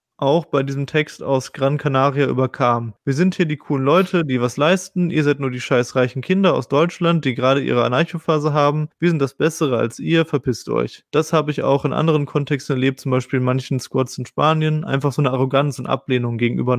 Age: 20-39